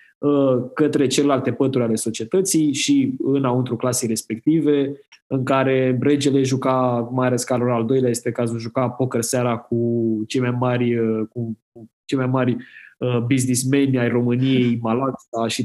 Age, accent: 20-39, native